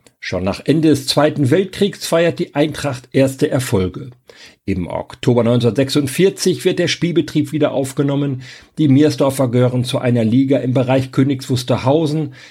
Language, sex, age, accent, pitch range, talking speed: German, male, 50-69, German, 120-150 Hz, 135 wpm